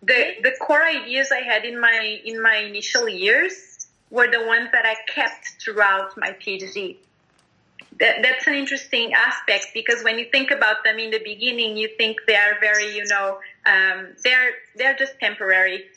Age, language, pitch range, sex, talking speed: 30-49, English, 215-255 Hz, female, 175 wpm